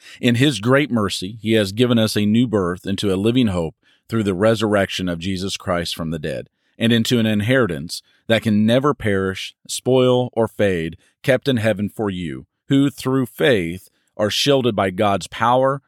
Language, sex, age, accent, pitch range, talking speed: English, male, 40-59, American, 100-120 Hz, 180 wpm